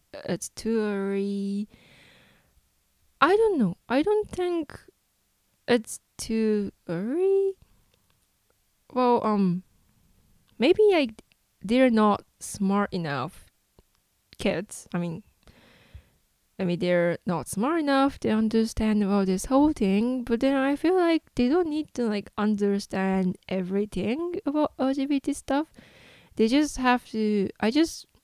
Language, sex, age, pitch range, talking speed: English, female, 10-29, 190-255 Hz, 120 wpm